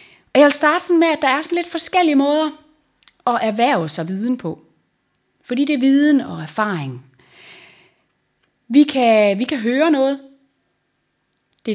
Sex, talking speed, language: female, 155 wpm, Danish